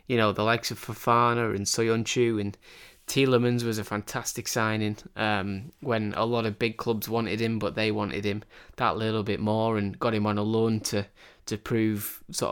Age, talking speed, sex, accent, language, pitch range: 20-39, 195 wpm, male, British, English, 105-120 Hz